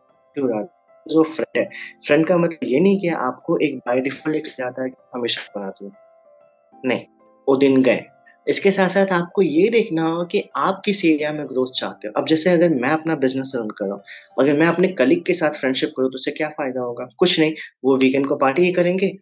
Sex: male